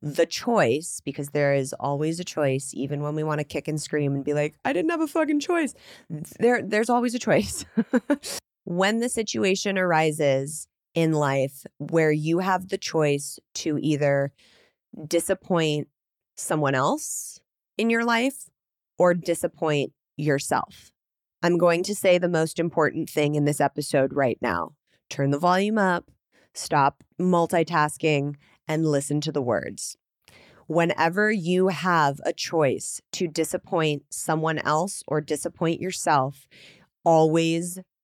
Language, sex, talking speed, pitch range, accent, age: English, female, 140 wpm, 145-180 Hz, American, 20-39